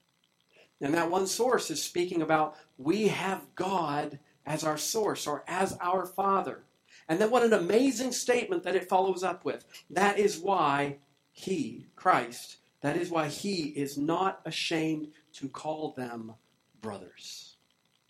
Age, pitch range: 50-69, 145-190 Hz